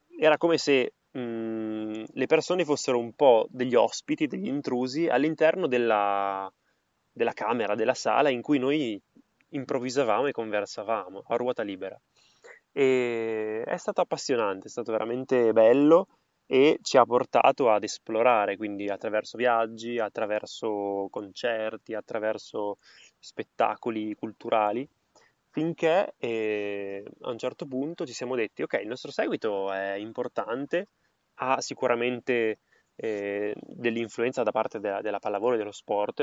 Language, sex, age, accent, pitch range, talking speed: Italian, male, 20-39, native, 105-130 Hz, 120 wpm